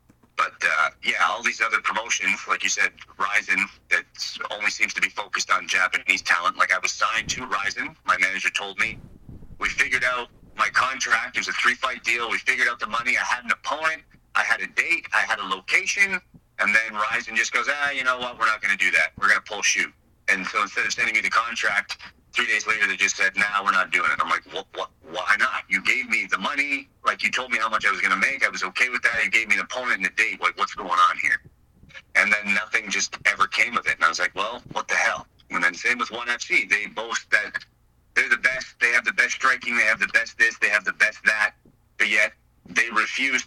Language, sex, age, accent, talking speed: English, male, 30-49, American, 255 wpm